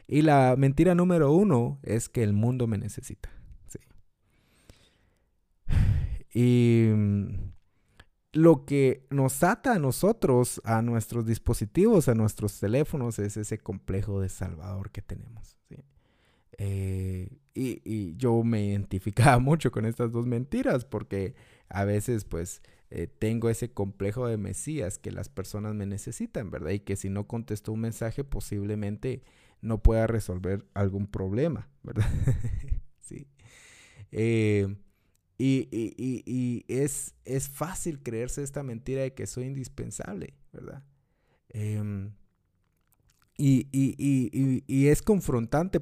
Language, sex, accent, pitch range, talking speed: Spanish, male, Mexican, 100-135 Hz, 125 wpm